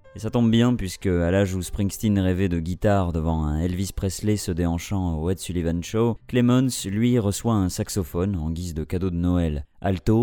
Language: French